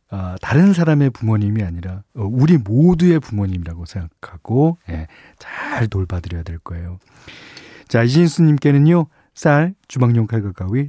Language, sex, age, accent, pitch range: Korean, male, 40-59, native, 100-150 Hz